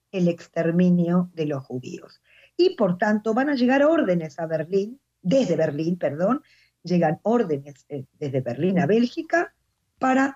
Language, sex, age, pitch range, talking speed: Spanish, female, 50-69, 165-260 Hz, 145 wpm